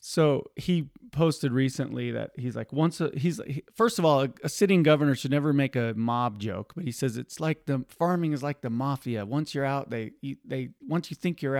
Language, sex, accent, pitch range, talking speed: English, male, American, 125-155 Hz, 225 wpm